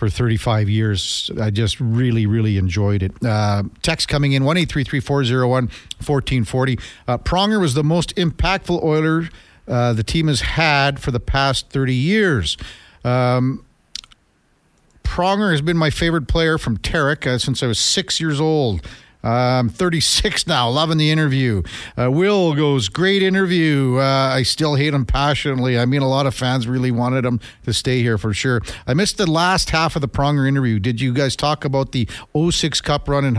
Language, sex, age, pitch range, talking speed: English, male, 50-69, 115-145 Hz, 180 wpm